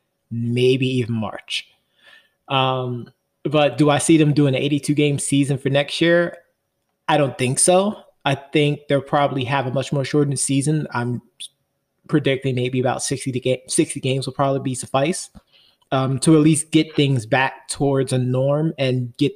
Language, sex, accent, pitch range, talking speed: English, male, American, 130-155 Hz, 175 wpm